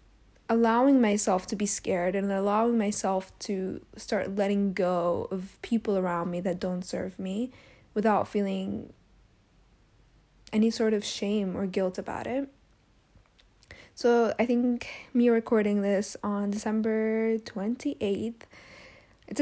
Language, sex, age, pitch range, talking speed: English, female, 10-29, 195-230 Hz, 125 wpm